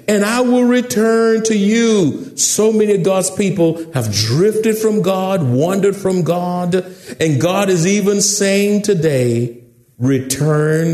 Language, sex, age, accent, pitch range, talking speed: English, male, 60-79, American, 130-200 Hz, 135 wpm